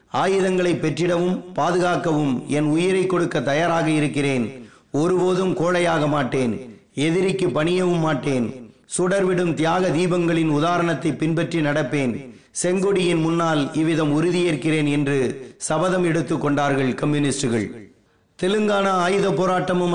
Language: Tamil